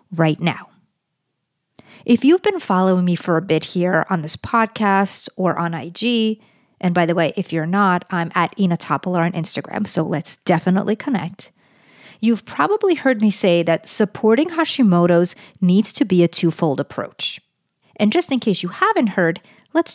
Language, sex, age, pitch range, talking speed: English, female, 40-59, 175-235 Hz, 165 wpm